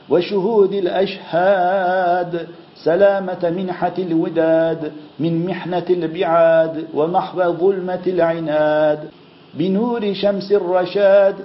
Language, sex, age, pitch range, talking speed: Turkish, male, 50-69, 165-190 Hz, 75 wpm